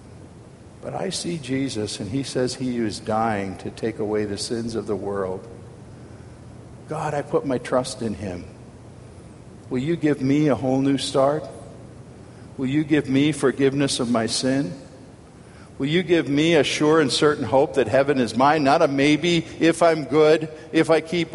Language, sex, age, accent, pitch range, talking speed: English, male, 50-69, American, 125-175 Hz, 175 wpm